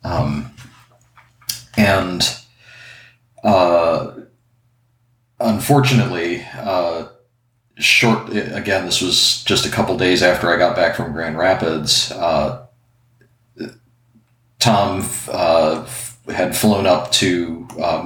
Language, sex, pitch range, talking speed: English, male, 85-120 Hz, 95 wpm